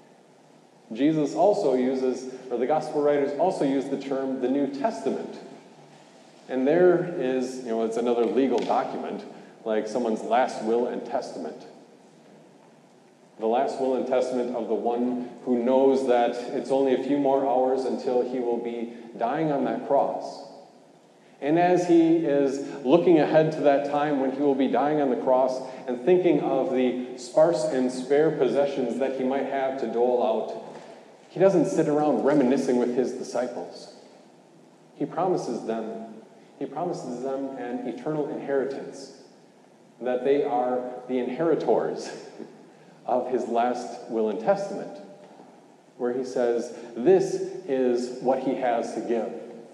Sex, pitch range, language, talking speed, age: male, 125-145 Hz, English, 150 wpm, 30-49